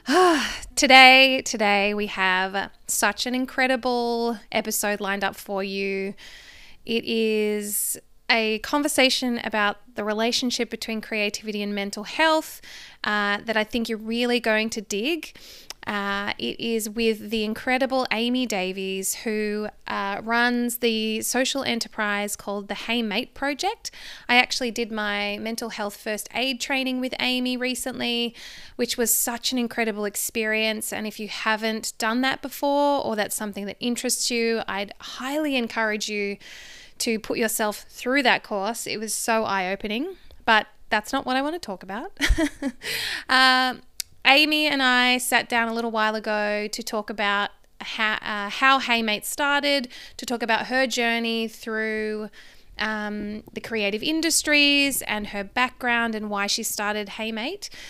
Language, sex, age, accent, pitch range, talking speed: English, female, 20-39, Australian, 210-255 Hz, 145 wpm